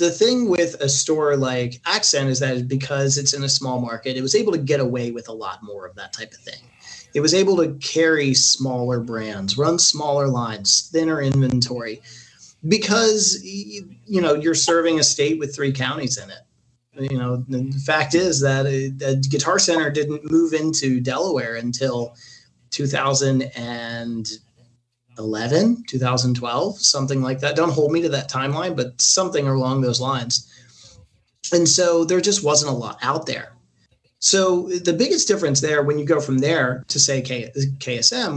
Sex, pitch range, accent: male, 125-155 Hz, American